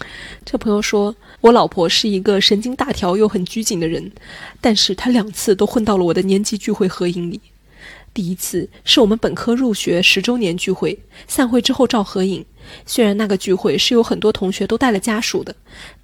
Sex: female